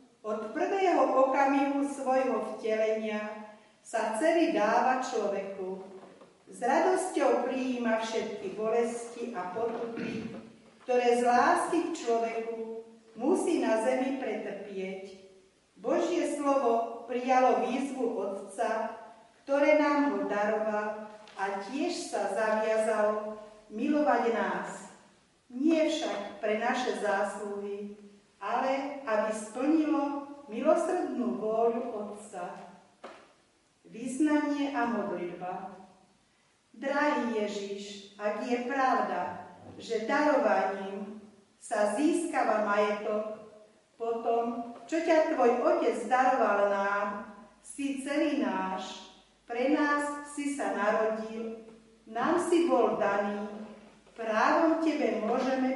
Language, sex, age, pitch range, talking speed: Slovak, female, 40-59, 210-265 Hz, 95 wpm